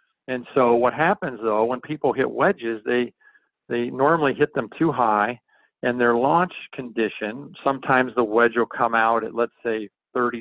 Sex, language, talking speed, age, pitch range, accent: male, English, 175 wpm, 50-69, 115-140 Hz, American